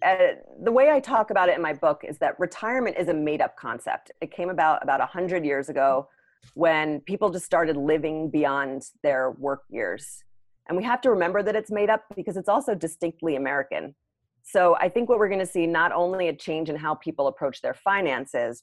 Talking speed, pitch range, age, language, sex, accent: 210 wpm, 140-180 Hz, 30-49, English, female, American